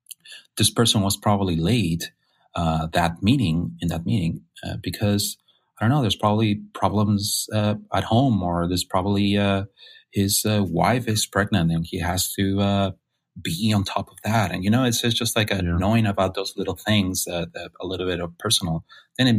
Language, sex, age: English, male, 30-49